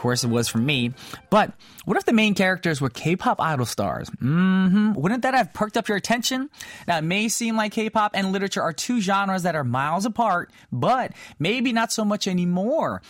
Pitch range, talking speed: 150-200 Hz, 215 wpm